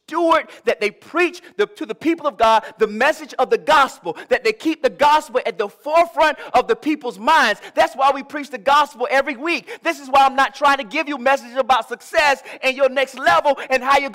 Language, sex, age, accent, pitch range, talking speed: English, male, 30-49, American, 215-305 Hz, 225 wpm